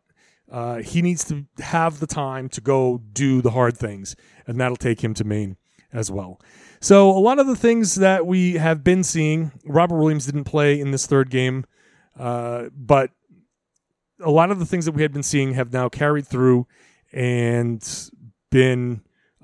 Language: English